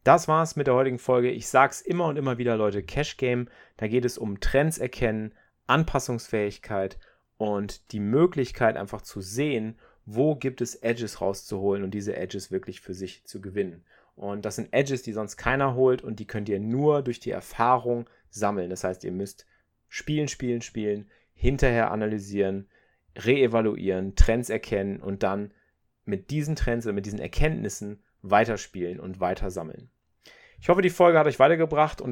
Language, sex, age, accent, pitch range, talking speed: German, male, 30-49, German, 100-130 Hz, 170 wpm